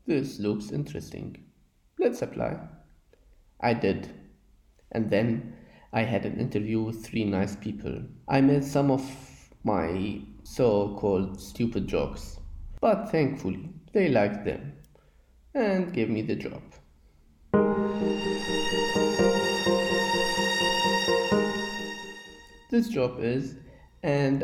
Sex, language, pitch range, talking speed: male, German, 95-130 Hz, 100 wpm